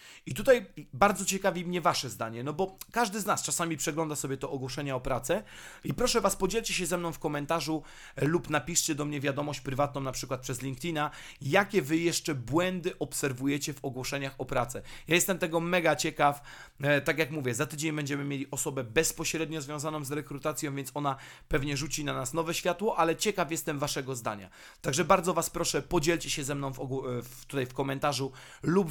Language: Polish